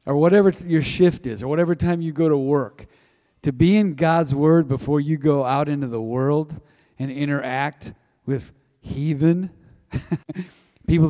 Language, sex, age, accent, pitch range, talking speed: English, male, 40-59, American, 130-170 Hz, 155 wpm